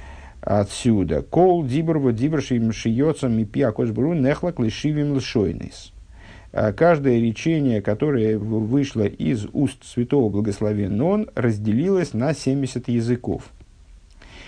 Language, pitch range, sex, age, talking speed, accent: Russian, 95-130 Hz, male, 50-69, 60 wpm, native